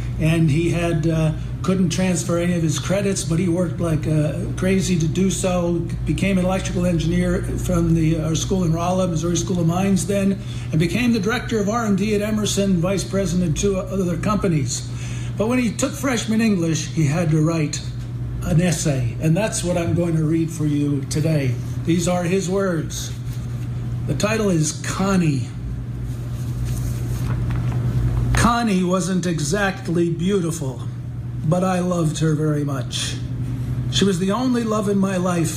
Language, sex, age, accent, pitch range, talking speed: English, male, 50-69, American, 125-185 Hz, 160 wpm